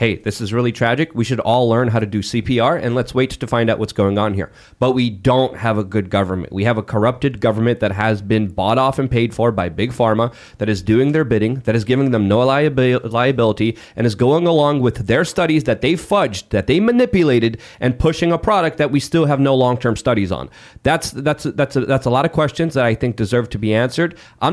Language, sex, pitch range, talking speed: English, male, 115-145 Hz, 240 wpm